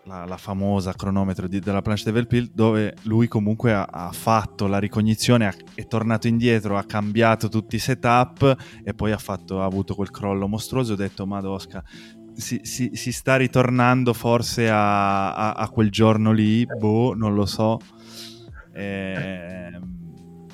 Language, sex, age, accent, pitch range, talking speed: Italian, male, 20-39, native, 105-120 Hz, 160 wpm